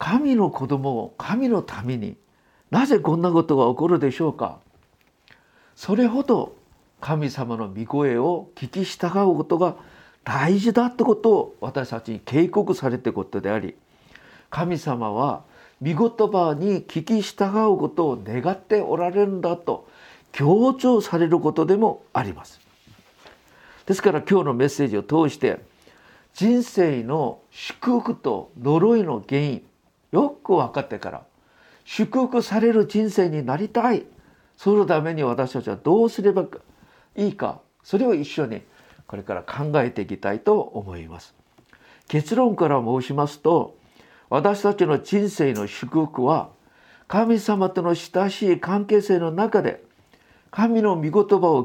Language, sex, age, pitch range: Japanese, male, 50-69, 140-210 Hz